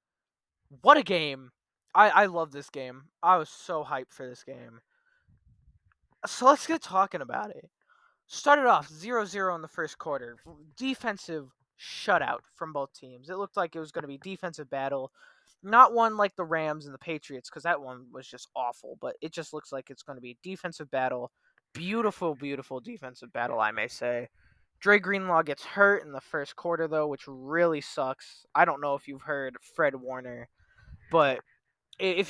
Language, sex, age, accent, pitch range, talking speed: English, male, 20-39, American, 130-190 Hz, 185 wpm